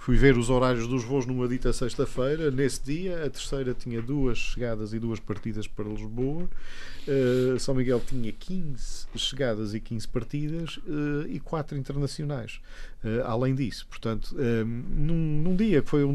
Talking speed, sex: 165 wpm, male